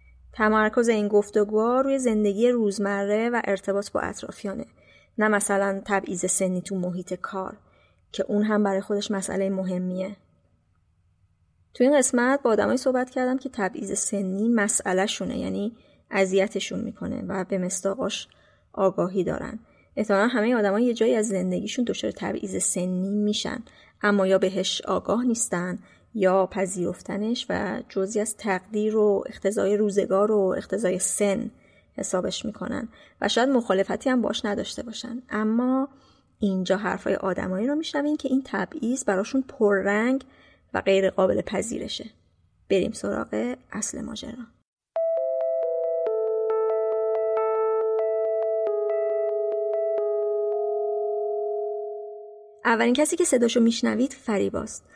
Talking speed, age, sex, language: 115 wpm, 30-49, female, Persian